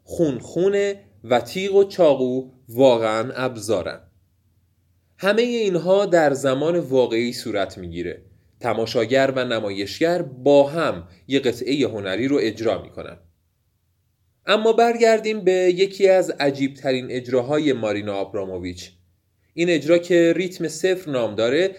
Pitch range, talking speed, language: 110-175 Hz, 115 wpm, Persian